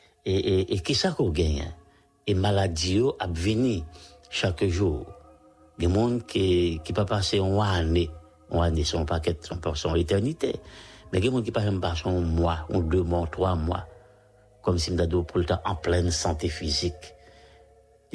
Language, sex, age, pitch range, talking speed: English, male, 60-79, 85-105 Hz, 165 wpm